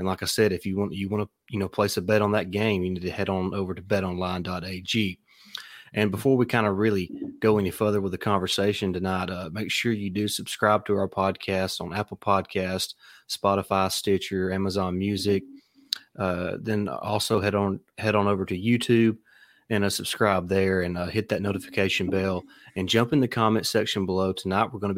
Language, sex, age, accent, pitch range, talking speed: English, male, 30-49, American, 95-105 Hz, 205 wpm